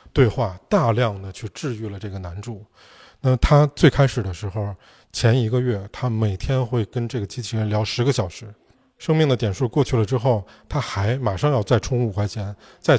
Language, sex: Chinese, male